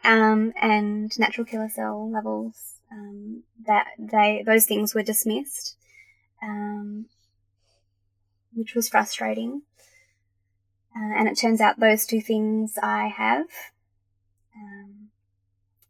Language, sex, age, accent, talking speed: English, female, 20-39, Australian, 105 wpm